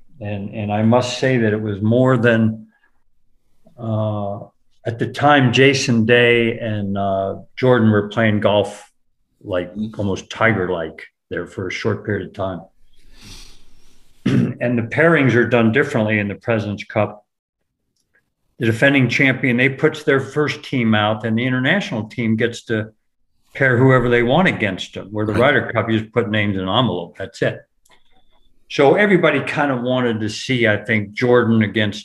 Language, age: German, 50-69